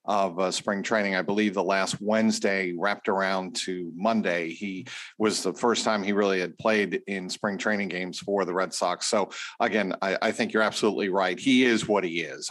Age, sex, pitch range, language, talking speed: 50-69, male, 100-130 Hz, English, 205 wpm